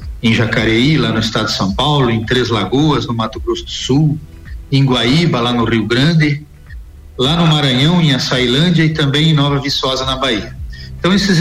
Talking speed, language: 190 wpm, Portuguese